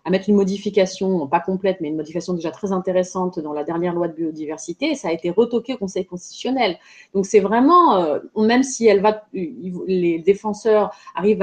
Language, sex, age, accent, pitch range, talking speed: French, female, 30-49, French, 180-220 Hz, 190 wpm